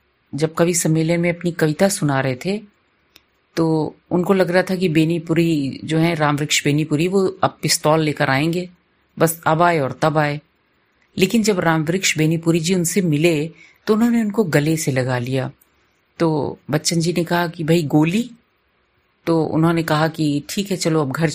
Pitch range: 145-180 Hz